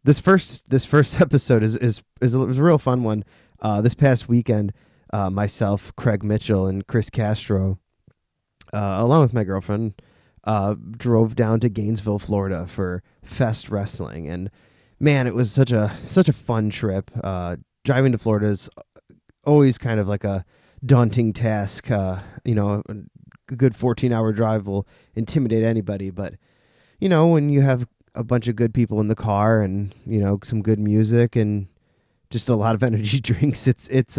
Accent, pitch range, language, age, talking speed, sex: American, 100-125 Hz, English, 20-39, 180 wpm, male